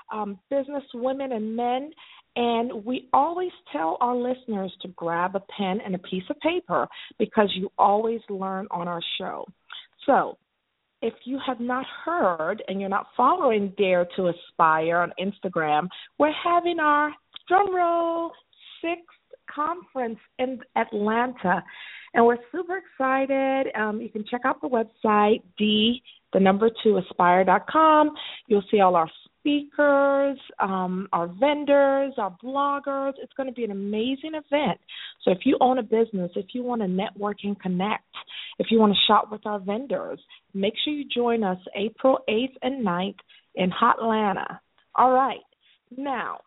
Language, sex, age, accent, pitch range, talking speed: English, female, 40-59, American, 200-280 Hz, 145 wpm